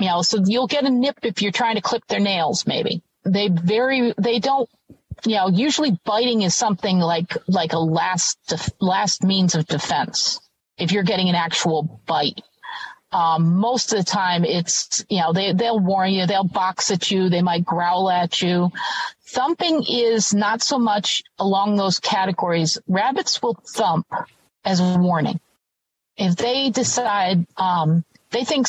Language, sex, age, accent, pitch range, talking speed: English, female, 50-69, American, 185-240 Hz, 170 wpm